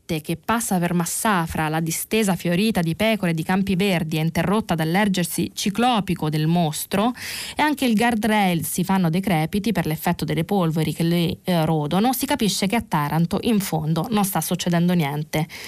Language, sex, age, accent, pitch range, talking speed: Italian, female, 20-39, native, 170-210 Hz, 170 wpm